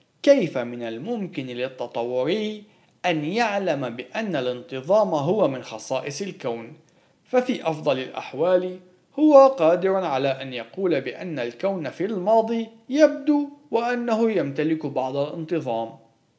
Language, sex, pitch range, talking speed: Arabic, male, 130-200 Hz, 105 wpm